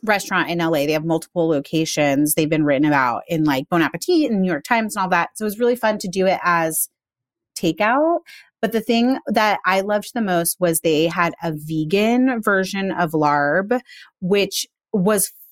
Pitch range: 165-215 Hz